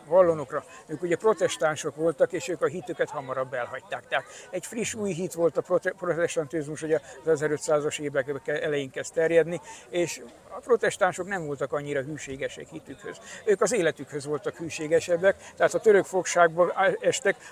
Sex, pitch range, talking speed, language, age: male, 150-185 Hz, 145 wpm, Hungarian, 60-79